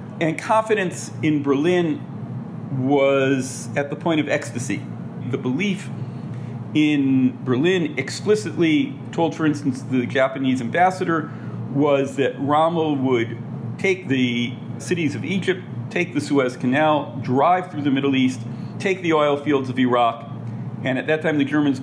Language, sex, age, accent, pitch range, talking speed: English, male, 50-69, American, 125-150 Hz, 140 wpm